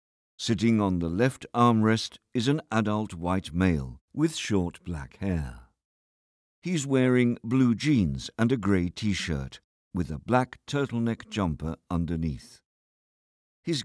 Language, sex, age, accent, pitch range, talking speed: English, male, 50-69, British, 80-120 Hz, 125 wpm